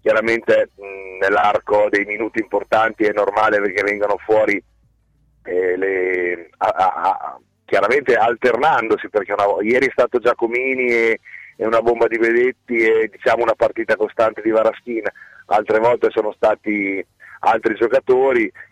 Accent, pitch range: native, 110-130 Hz